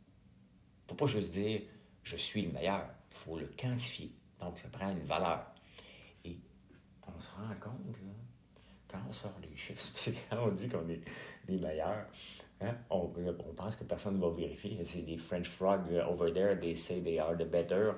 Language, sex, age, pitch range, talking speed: French, male, 60-79, 85-105 Hz, 205 wpm